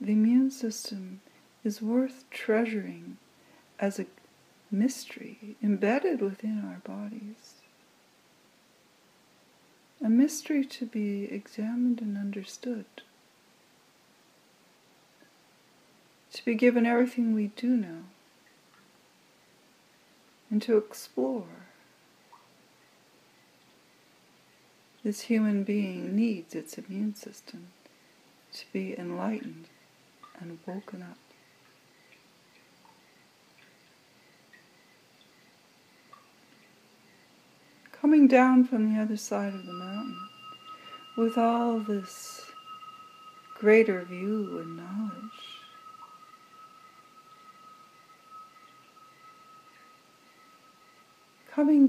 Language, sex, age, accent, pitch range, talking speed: English, female, 60-79, American, 210-270 Hz, 70 wpm